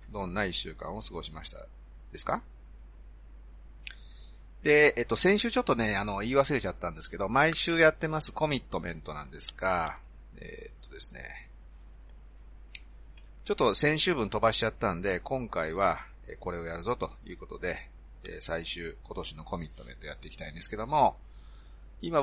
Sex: male